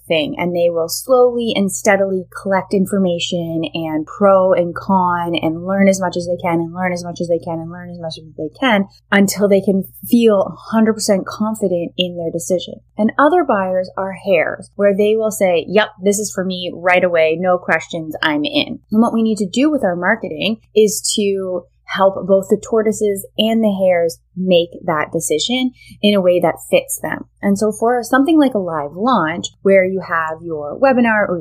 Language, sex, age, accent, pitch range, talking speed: English, female, 20-39, American, 175-225 Hz, 200 wpm